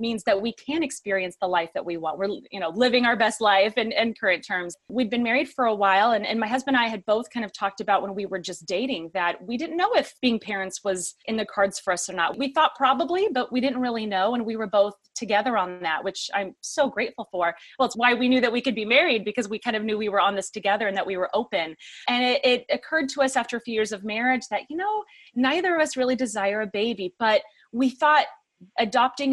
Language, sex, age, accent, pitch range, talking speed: English, female, 30-49, American, 195-250 Hz, 265 wpm